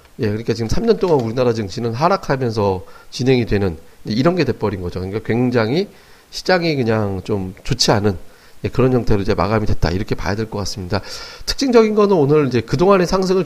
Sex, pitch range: male, 110-155 Hz